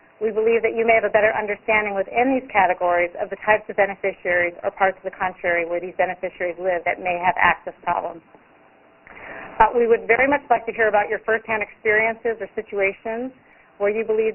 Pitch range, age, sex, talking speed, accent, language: 180-220 Hz, 40-59, female, 200 wpm, American, English